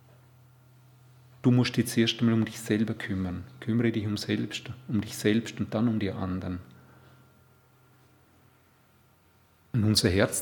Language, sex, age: German, male, 40-59